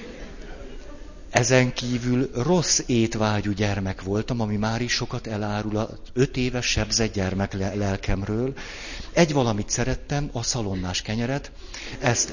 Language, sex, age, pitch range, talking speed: Hungarian, male, 50-69, 100-125 Hz, 110 wpm